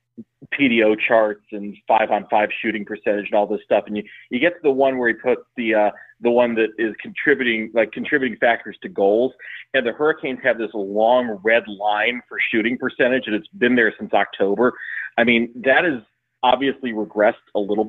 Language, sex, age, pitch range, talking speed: English, male, 30-49, 105-125 Hz, 200 wpm